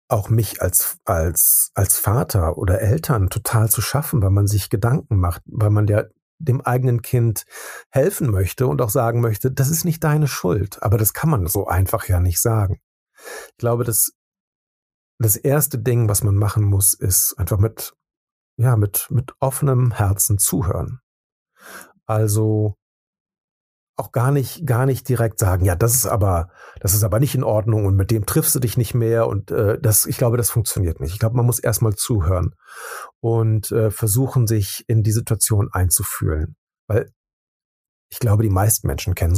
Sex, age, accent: male, 50-69, German